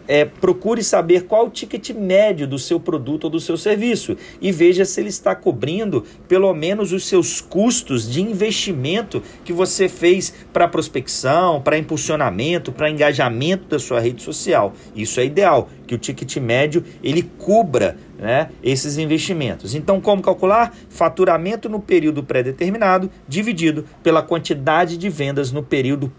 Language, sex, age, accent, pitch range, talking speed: Portuguese, male, 40-59, Brazilian, 150-185 Hz, 145 wpm